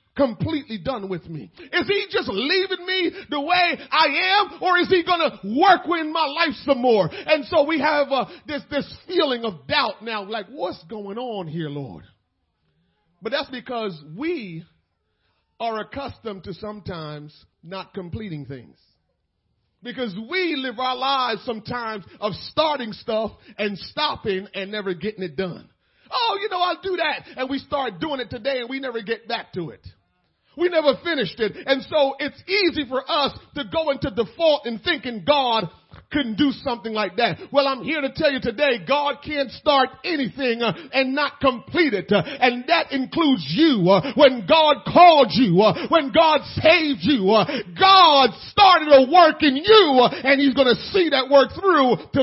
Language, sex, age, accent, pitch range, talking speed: English, male, 40-59, American, 215-305 Hz, 170 wpm